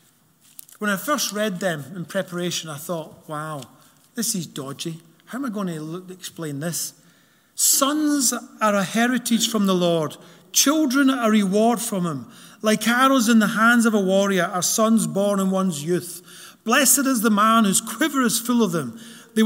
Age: 40-59